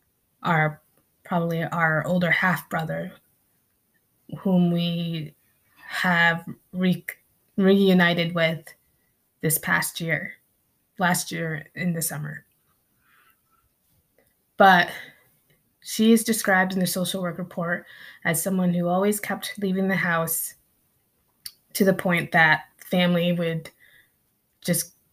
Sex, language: female, English